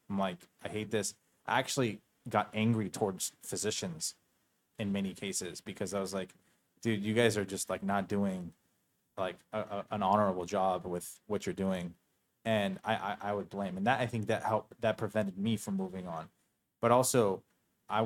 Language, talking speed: English, 185 wpm